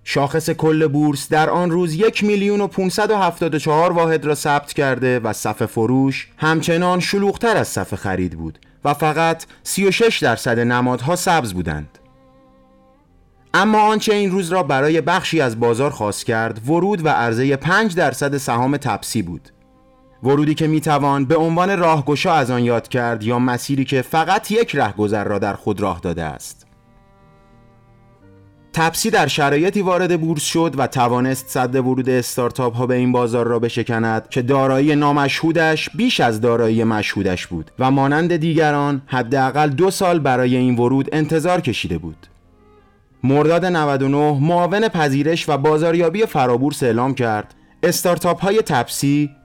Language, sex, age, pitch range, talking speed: Persian, male, 30-49, 120-170 Hz, 150 wpm